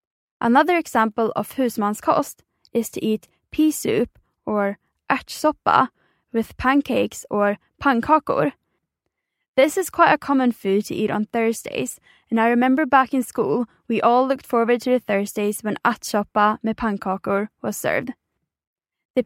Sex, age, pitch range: female, 10-29, 215-255 Hz